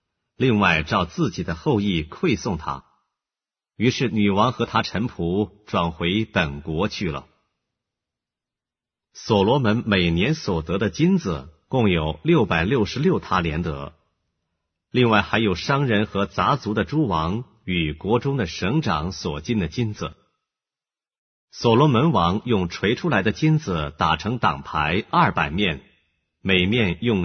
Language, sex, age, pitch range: English, male, 50-69, 85-115 Hz